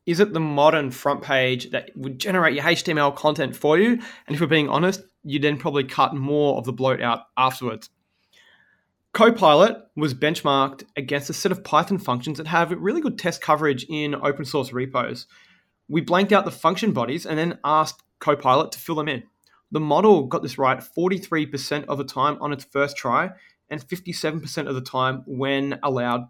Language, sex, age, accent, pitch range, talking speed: English, male, 20-39, Australian, 135-180 Hz, 185 wpm